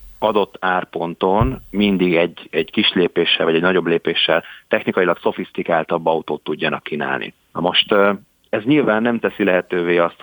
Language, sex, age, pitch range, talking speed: Hungarian, male, 30-49, 85-100 Hz, 140 wpm